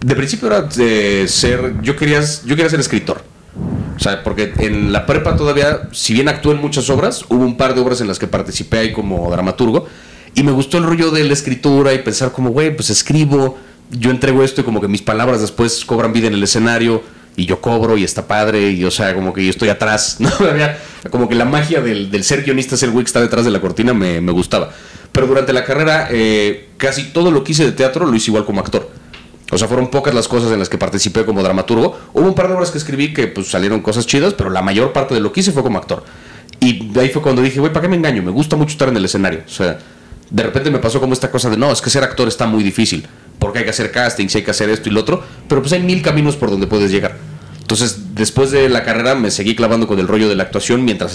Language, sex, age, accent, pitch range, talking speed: Spanish, male, 30-49, Mexican, 105-135 Hz, 260 wpm